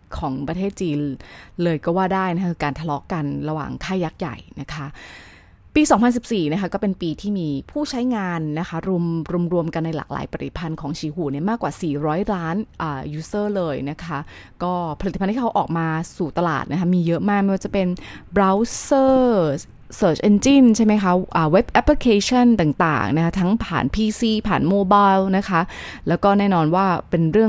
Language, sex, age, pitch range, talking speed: English, female, 20-39, 160-210 Hz, 45 wpm